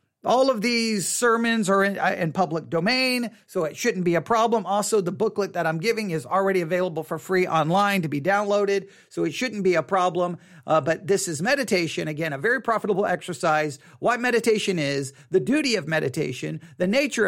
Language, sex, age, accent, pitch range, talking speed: English, male, 40-59, American, 160-215 Hz, 190 wpm